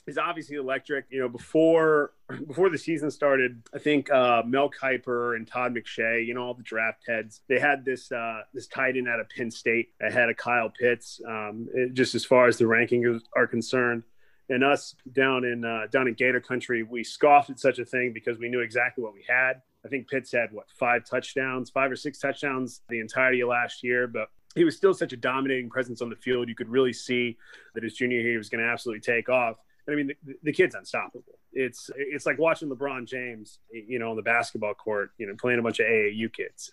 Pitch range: 120-135 Hz